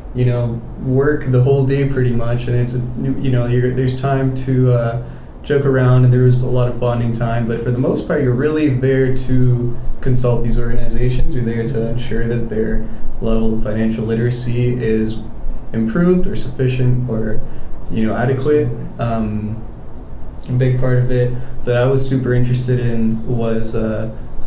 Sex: male